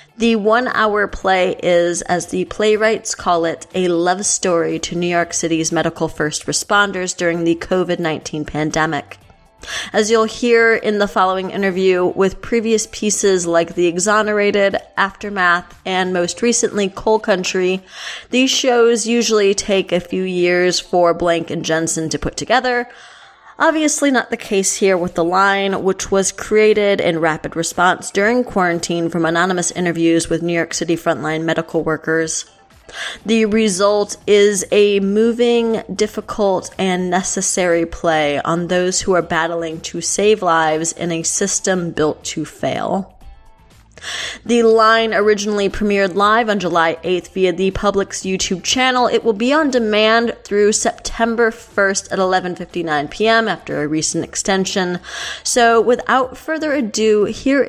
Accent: American